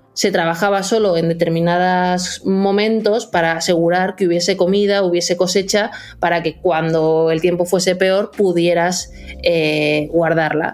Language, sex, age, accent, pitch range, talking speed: Spanish, female, 20-39, Spanish, 175-205 Hz, 130 wpm